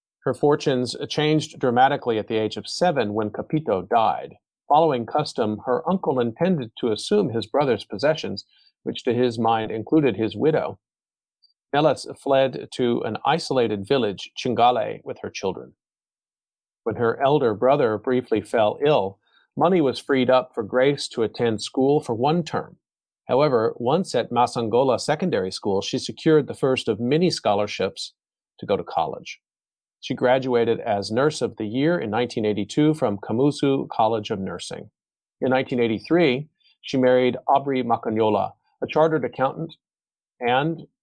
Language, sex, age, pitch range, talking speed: English, male, 40-59, 115-140 Hz, 145 wpm